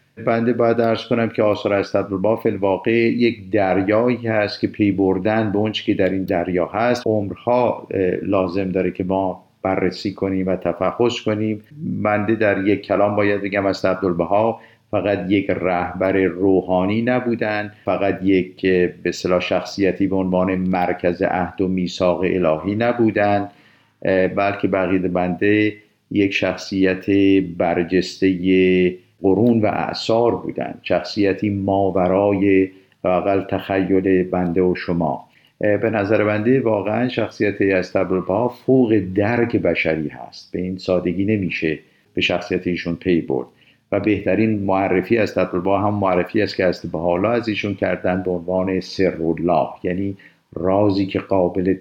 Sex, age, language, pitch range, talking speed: male, 50-69, Persian, 95-105 Hz, 135 wpm